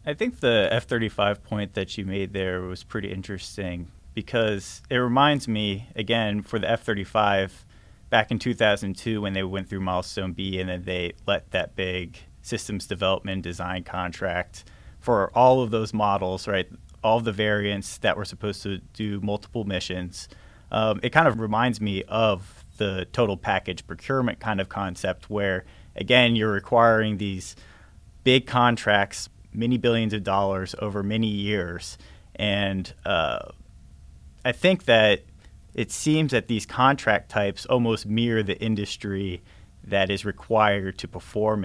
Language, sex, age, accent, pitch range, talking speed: English, male, 30-49, American, 95-110 Hz, 150 wpm